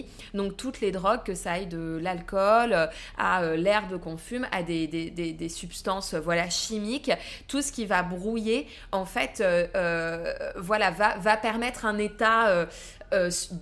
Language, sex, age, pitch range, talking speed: French, female, 20-39, 175-225 Hz, 170 wpm